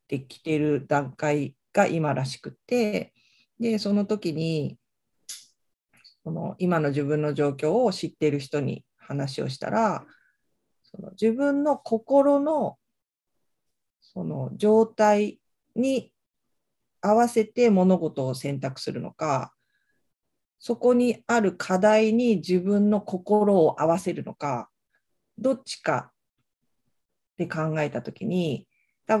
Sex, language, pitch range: female, Japanese, 150-230 Hz